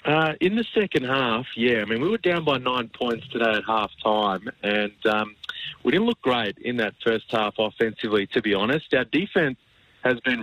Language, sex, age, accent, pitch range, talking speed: English, male, 30-49, Australian, 105-130 Hz, 200 wpm